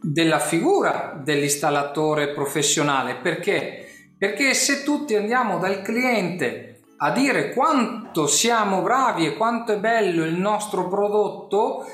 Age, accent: 40-59, native